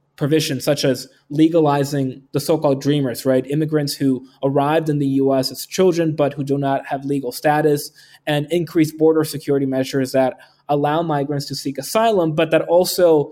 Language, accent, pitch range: English, American, 135-155 Hz